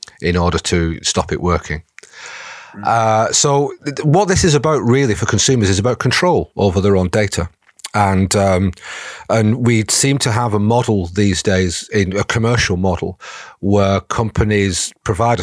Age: 40-59